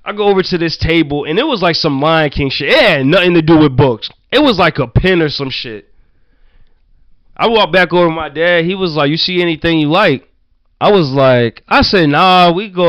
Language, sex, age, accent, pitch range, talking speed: English, male, 20-39, American, 120-165 Hz, 240 wpm